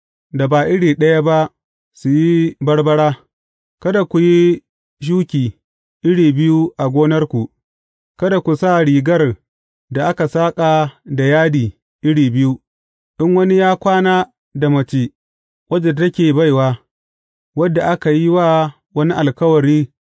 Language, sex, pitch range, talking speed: English, male, 130-160 Hz, 100 wpm